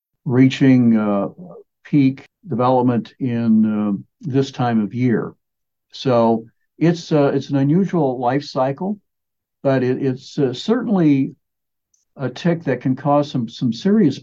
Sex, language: male, English